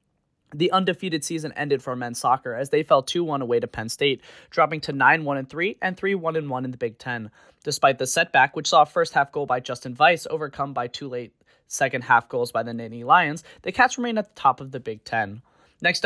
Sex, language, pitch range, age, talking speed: male, English, 130-185 Hz, 20-39, 210 wpm